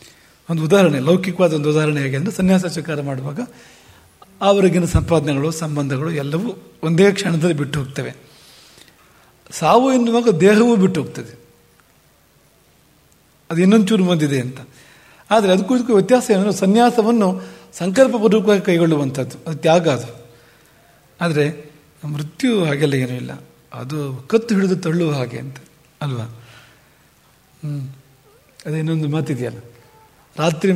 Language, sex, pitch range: English, male, 145-195 Hz